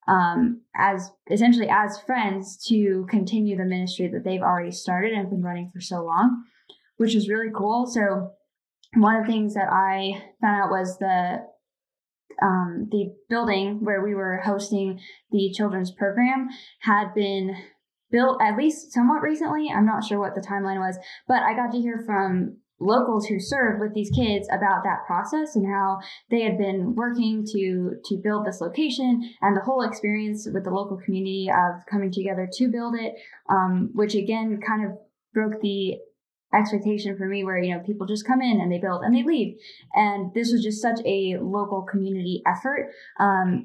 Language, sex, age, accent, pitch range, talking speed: English, female, 10-29, American, 190-225 Hz, 180 wpm